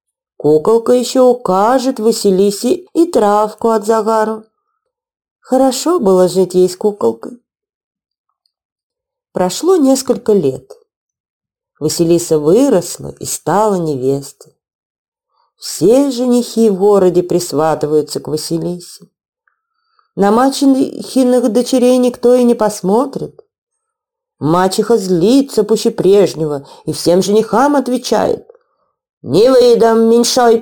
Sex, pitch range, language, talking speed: female, 180-275 Hz, Russian, 90 wpm